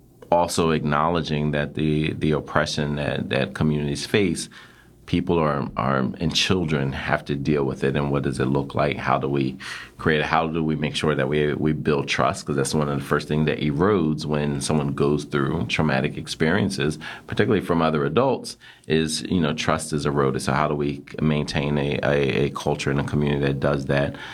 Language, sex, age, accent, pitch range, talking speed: English, male, 30-49, American, 70-80 Hz, 200 wpm